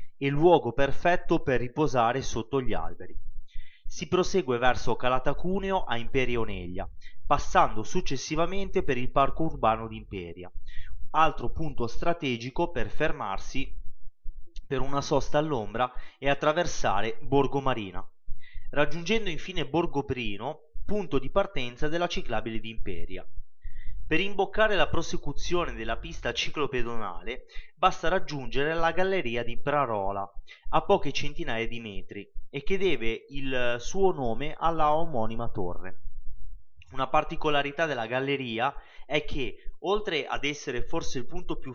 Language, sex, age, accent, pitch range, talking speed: Italian, male, 30-49, native, 115-160 Hz, 125 wpm